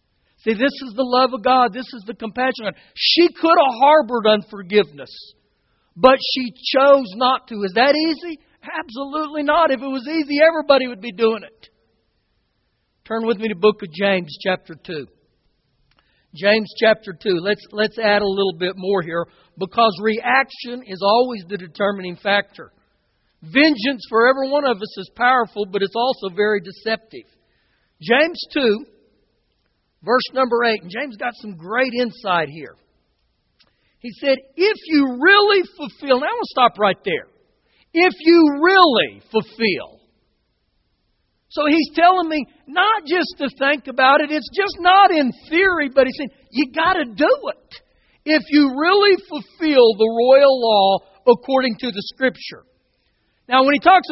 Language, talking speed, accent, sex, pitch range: English, 160 wpm, American, male, 210-295 Hz